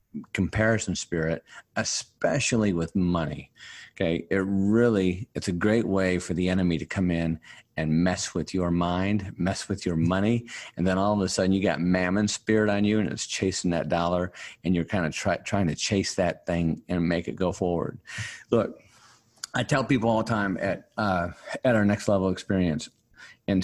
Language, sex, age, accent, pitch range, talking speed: English, male, 40-59, American, 90-110 Hz, 185 wpm